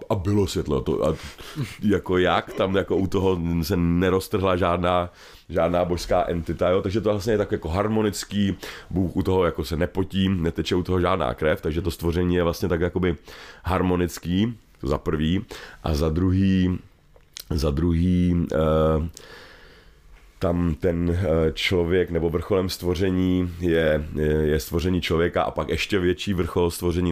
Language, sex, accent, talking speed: Czech, male, native, 155 wpm